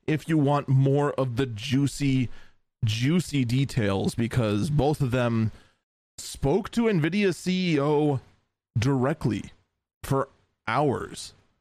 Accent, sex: American, male